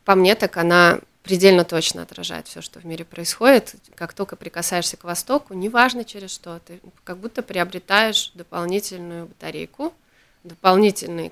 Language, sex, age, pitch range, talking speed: Russian, female, 30-49, 180-225 Hz, 145 wpm